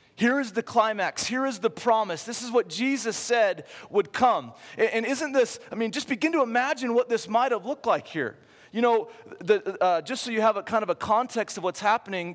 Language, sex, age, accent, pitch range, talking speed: English, male, 30-49, American, 180-230 Hz, 225 wpm